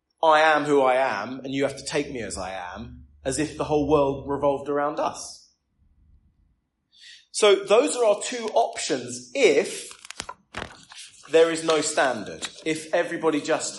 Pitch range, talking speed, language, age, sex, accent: 110-155 Hz, 155 wpm, English, 30-49, male, British